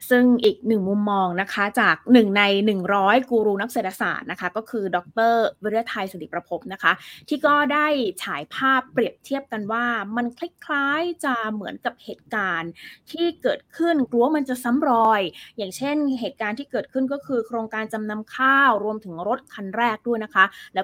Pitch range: 195-250 Hz